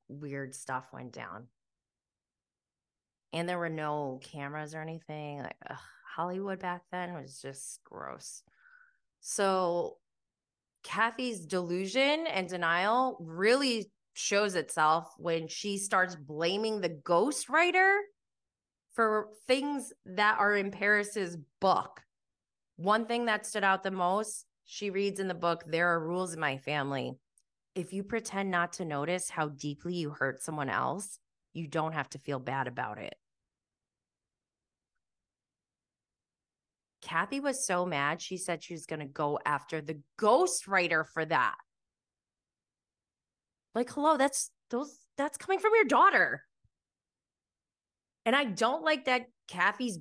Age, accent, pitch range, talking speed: 20-39, American, 160-235 Hz, 130 wpm